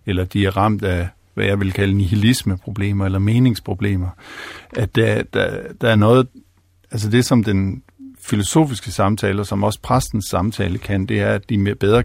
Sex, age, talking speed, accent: male, 50-69, 175 wpm, native